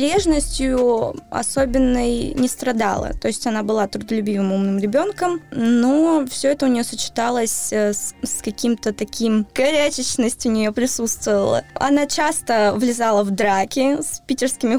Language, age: Russian, 20-39